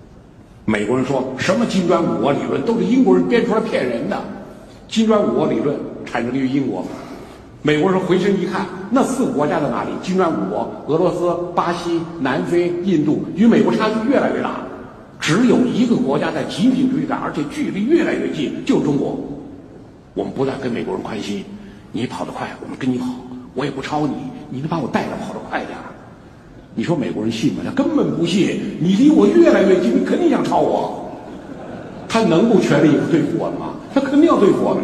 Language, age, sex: Chinese, 60-79, male